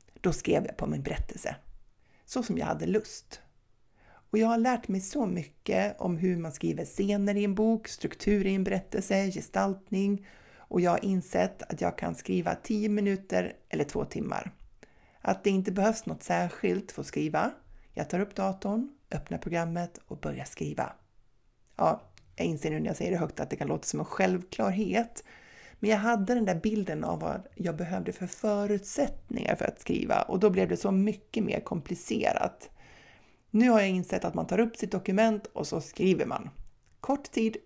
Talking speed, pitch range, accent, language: 185 wpm, 185-220 Hz, native, Swedish